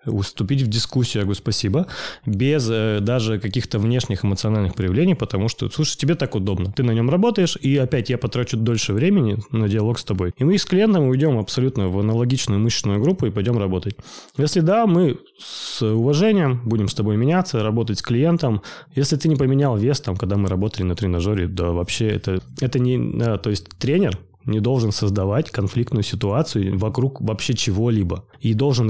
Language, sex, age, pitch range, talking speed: Russian, male, 20-39, 105-135 Hz, 185 wpm